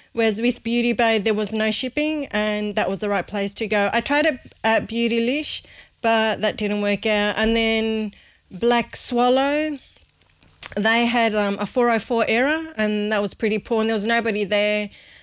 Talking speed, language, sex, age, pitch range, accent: 180 wpm, English, female, 20-39, 210-235 Hz, Australian